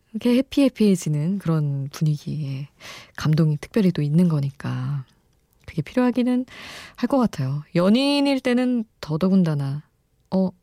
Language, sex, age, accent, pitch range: Korean, female, 20-39, native, 150-235 Hz